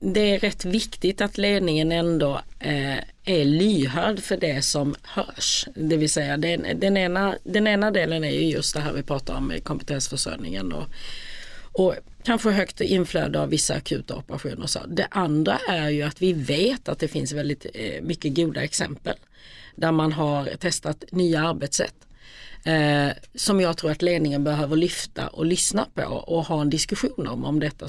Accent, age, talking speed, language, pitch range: native, 40-59, 170 wpm, Swedish, 145-185 Hz